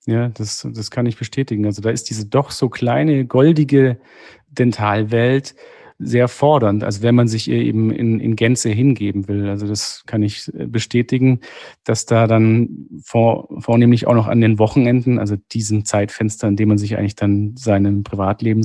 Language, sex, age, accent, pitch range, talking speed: German, male, 40-59, German, 105-125 Hz, 175 wpm